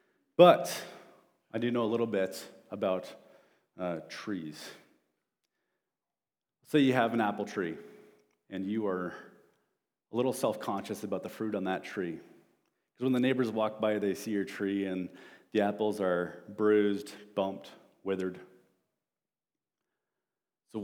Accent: American